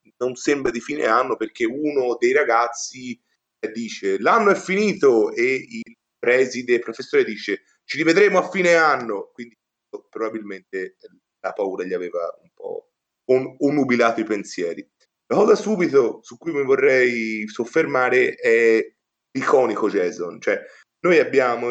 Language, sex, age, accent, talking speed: Italian, male, 30-49, native, 140 wpm